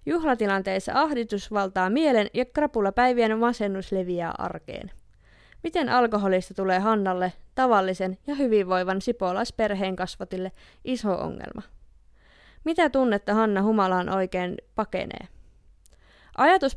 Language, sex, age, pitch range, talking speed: Finnish, female, 20-39, 190-245 Hz, 95 wpm